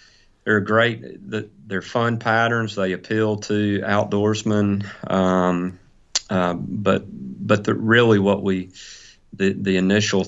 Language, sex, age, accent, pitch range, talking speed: English, male, 40-59, American, 90-105 Hz, 115 wpm